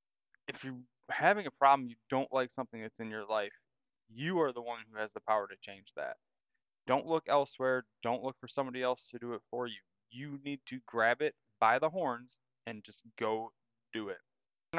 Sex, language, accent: male, English, American